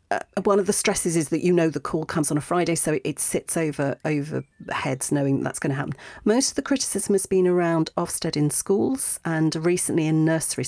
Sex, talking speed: female, 230 wpm